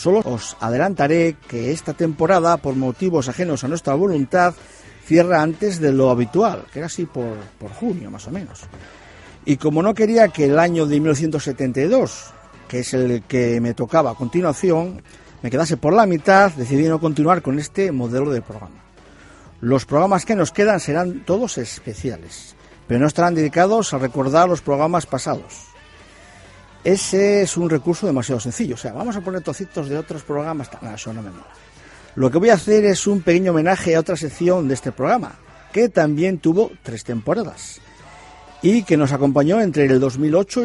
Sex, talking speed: male, 180 wpm